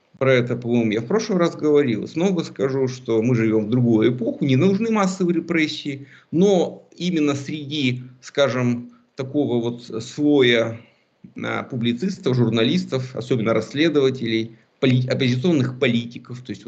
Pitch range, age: 115-145 Hz, 50-69